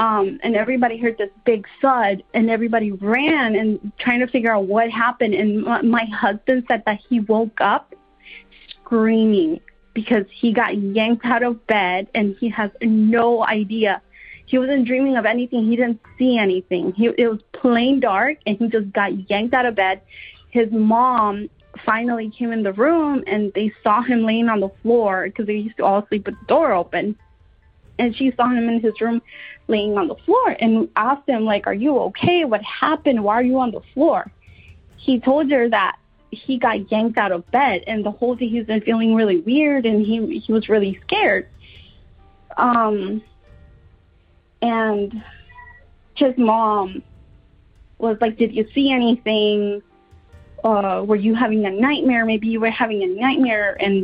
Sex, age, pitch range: female, 30-49, 210-245 Hz